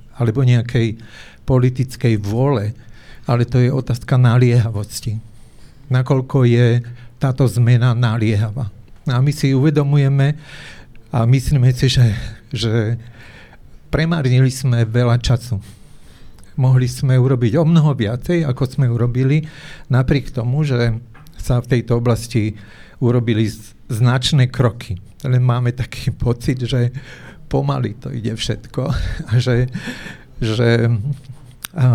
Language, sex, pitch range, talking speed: Slovak, male, 120-135 Hz, 110 wpm